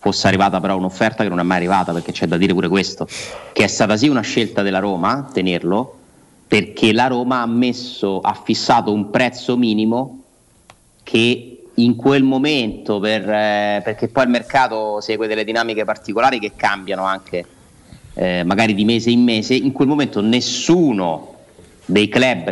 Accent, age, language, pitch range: native, 30-49, Italian, 95-120 Hz